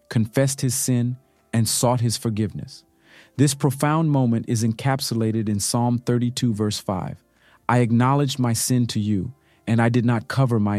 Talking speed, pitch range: 160 wpm, 110-130 Hz